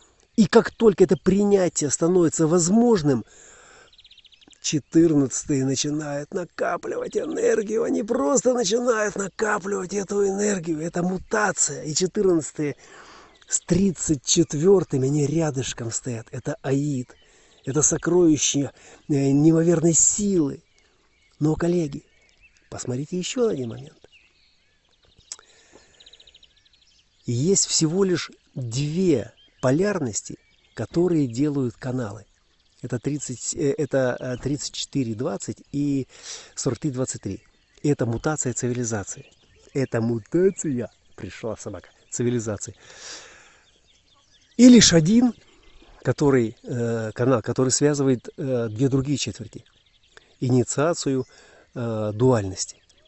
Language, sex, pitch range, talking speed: Russian, male, 120-175 Hz, 80 wpm